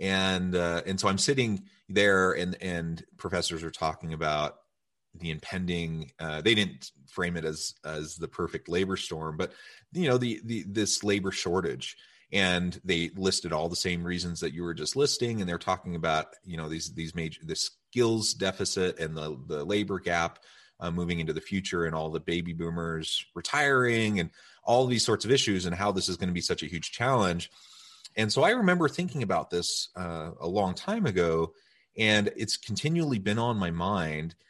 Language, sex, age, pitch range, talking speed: English, male, 30-49, 85-105 Hz, 190 wpm